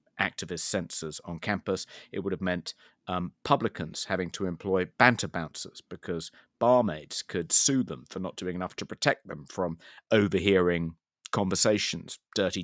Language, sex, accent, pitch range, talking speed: English, male, British, 90-105 Hz, 145 wpm